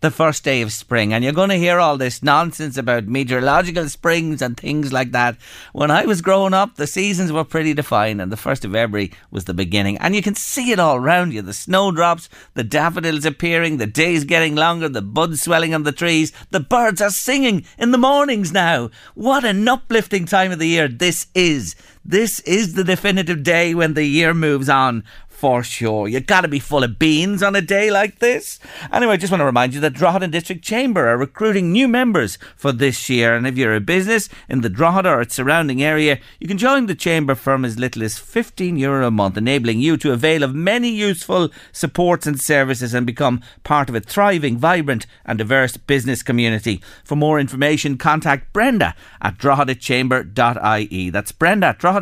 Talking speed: 205 wpm